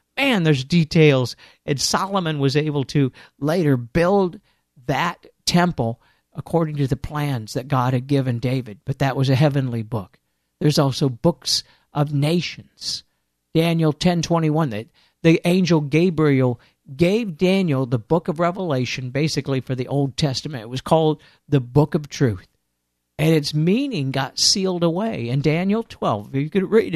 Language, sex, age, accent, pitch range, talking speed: English, male, 50-69, American, 130-175 Hz, 155 wpm